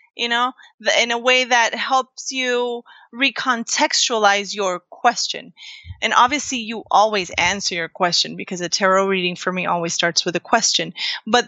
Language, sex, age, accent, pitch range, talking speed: English, female, 30-49, American, 195-255 Hz, 155 wpm